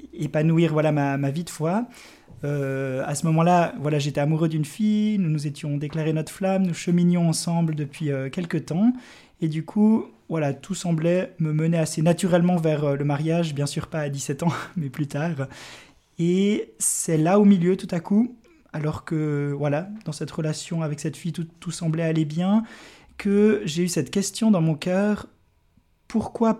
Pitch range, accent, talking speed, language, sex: 145-175 Hz, French, 185 wpm, French, male